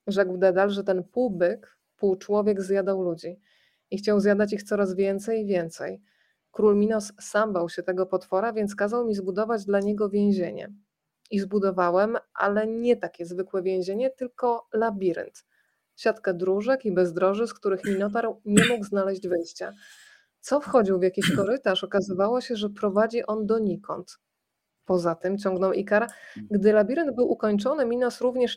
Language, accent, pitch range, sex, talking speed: Polish, native, 190-225 Hz, female, 155 wpm